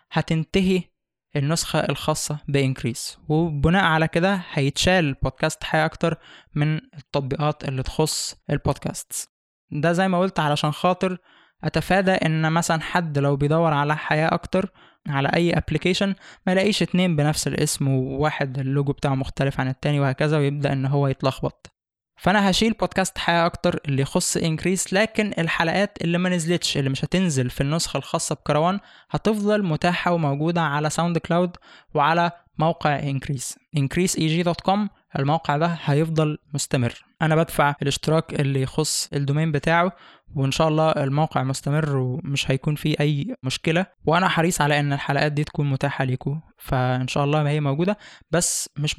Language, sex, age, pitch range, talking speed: Arabic, male, 20-39, 140-170 Hz, 145 wpm